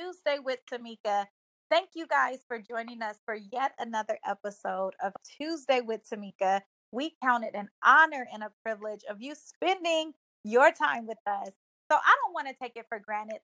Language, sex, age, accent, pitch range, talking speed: English, female, 30-49, American, 220-280 Hz, 185 wpm